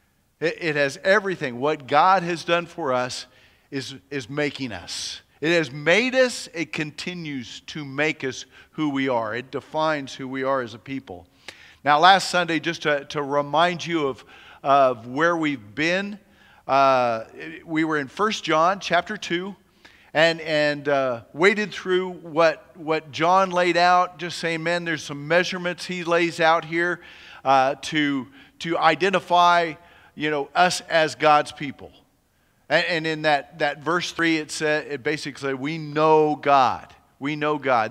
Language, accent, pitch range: English, American, 135-170 Hz